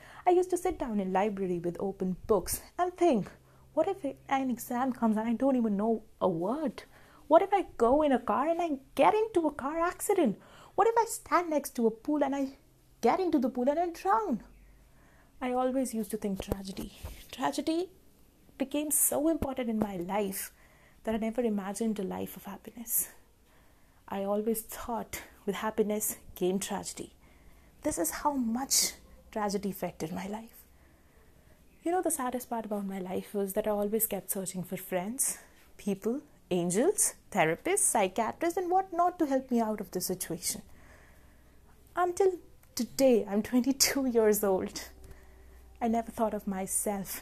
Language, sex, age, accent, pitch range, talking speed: English, female, 30-49, Indian, 190-275 Hz, 170 wpm